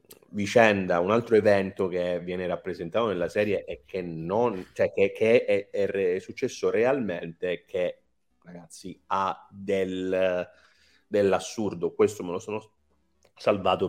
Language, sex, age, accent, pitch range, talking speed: Italian, male, 30-49, native, 95-130 Hz, 130 wpm